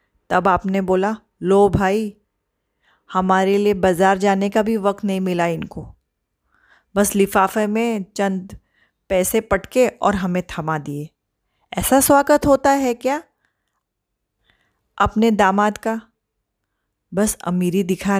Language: English